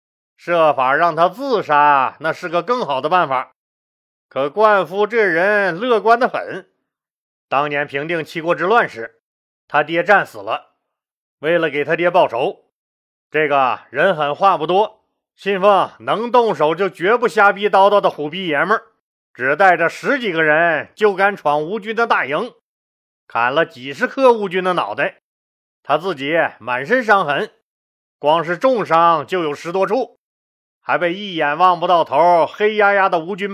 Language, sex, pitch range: Chinese, male, 150-200 Hz